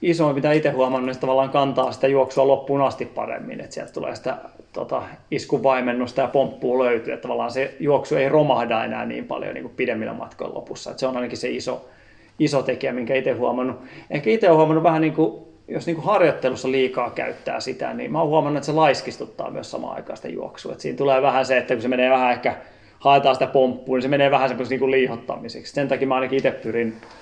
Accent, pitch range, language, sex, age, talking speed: native, 125-140 Hz, Finnish, male, 30-49, 205 wpm